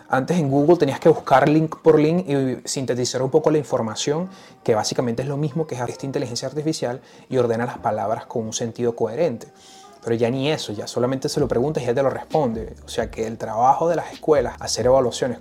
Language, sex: Spanish, male